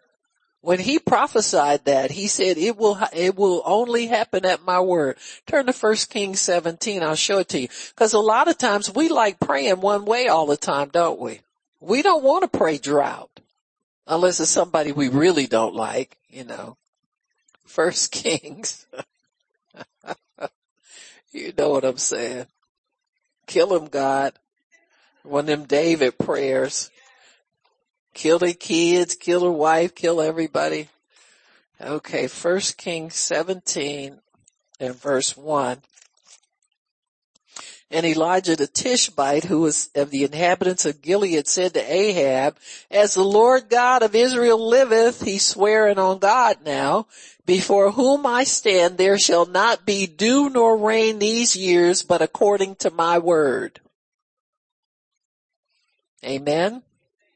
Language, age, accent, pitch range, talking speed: English, 60-79, American, 155-225 Hz, 135 wpm